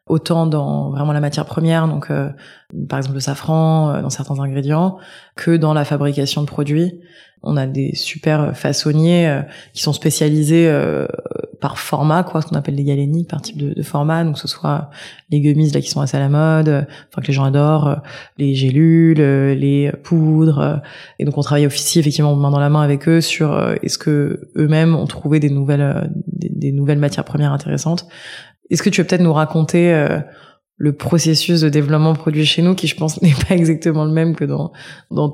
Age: 20-39